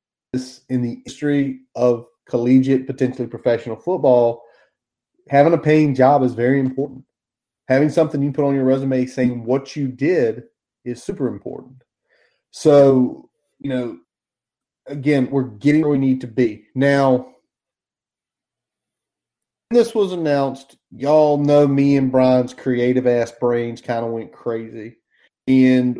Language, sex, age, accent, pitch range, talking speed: English, male, 30-49, American, 125-155 Hz, 135 wpm